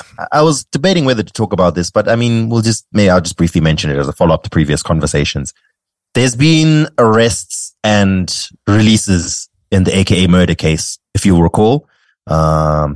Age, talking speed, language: 30-49, 185 wpm, English